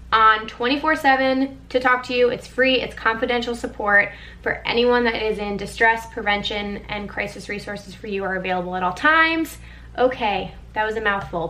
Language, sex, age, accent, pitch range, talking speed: English, female, 20-39, American, 190-240 Hz, 175 wpm